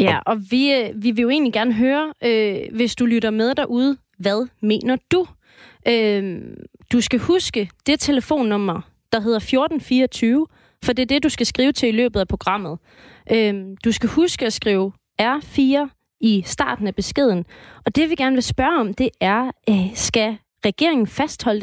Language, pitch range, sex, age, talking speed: Danish, 210-270 Hz, female, 30-49, 175 wpm